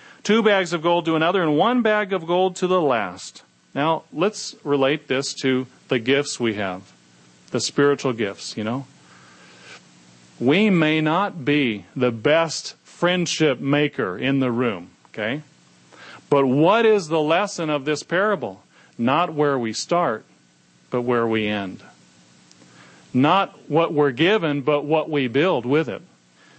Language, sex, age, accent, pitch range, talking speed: English, male, 40-59, American, 130-175 Hz, 150 wpm